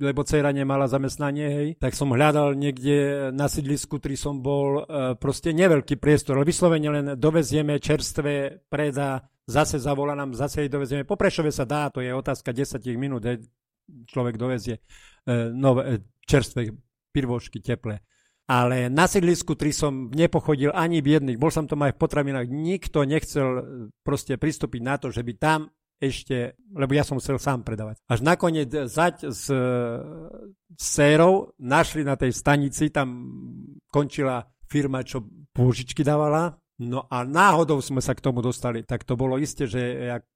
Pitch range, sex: 130-155 Hz, male